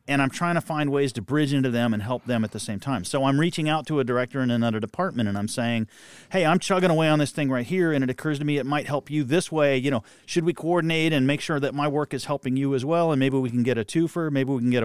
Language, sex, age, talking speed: English, male, 40-59, 310 wpm